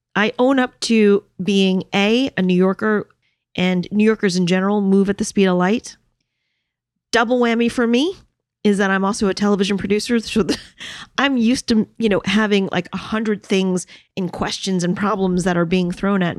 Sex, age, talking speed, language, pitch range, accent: female, 30-49, 190 wpm, English, 185-230 Hz, American